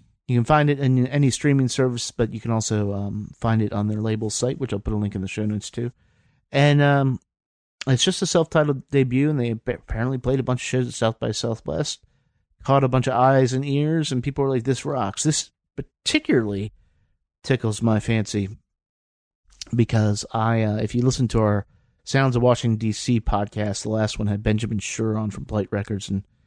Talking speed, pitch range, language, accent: 205 wpm, 105-130 Hz, English, American